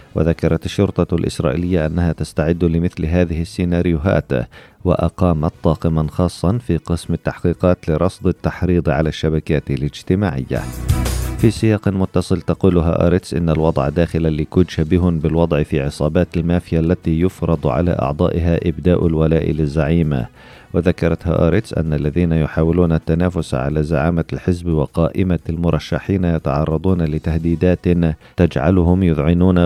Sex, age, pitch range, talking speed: male, 40-59, 80-90 Hz, 110 wpm